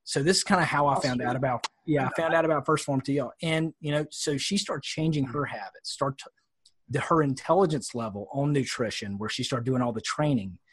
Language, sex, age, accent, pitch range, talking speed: English, male, 30-49, American, 120-155 Hz, 240 wpm